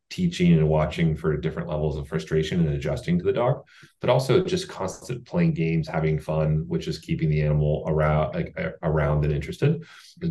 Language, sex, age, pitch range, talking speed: English, male, 30-49, 75-105 Hz, 185 wpm